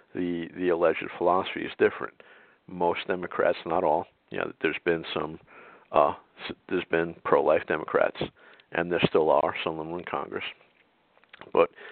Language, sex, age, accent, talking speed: English, male, 50-69, American, 155 wpm